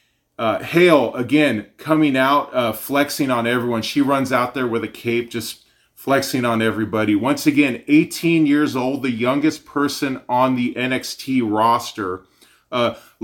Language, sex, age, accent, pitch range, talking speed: English, male, 30-49, American, 120-145 Hz, 150 wpm